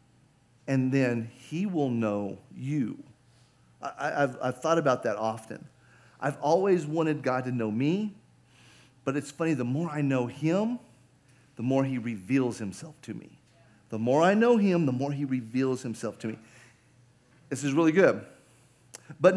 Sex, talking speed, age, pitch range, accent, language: male, 160 wpm, 40-59, 130-165 Hz, American, English